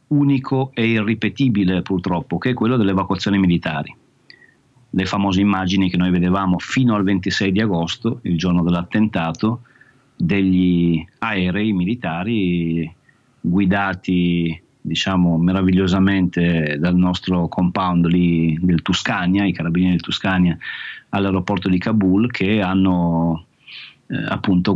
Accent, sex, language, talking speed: native, male, Italian, 115 wpm